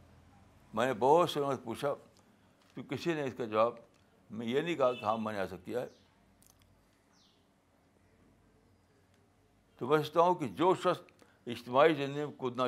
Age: 60-79